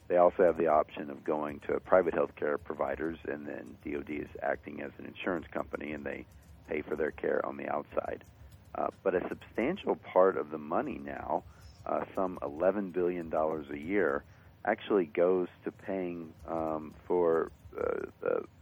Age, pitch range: 50-69, 80-95 Hz